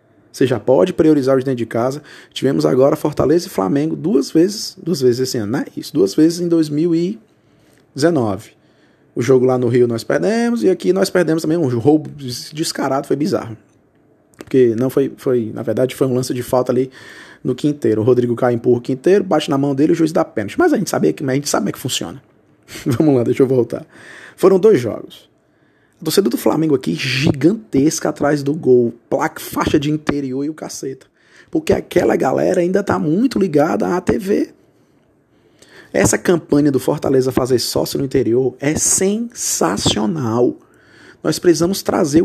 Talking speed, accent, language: 180 wpm, Brazilian, Portuguese